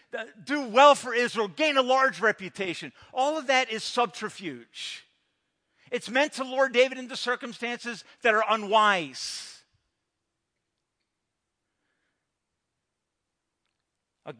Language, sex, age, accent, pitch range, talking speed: English, male, 50-69, American, 180-245 Hz, 100 wpm